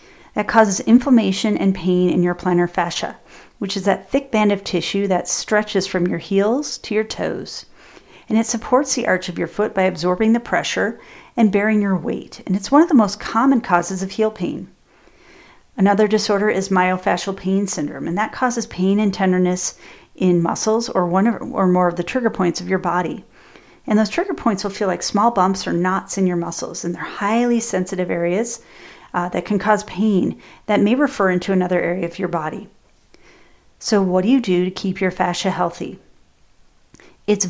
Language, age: English, 40-59